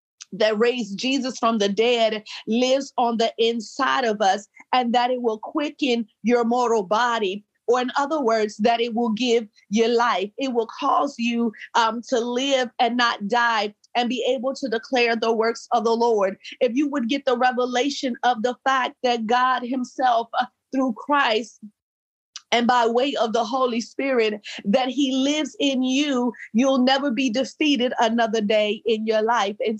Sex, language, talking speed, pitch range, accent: female, English, 175 wpm, 230-255 Hz, American